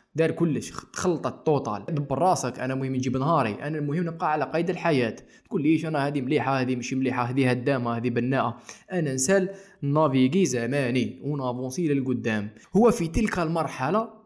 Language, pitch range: Arabic, 130-185 Hz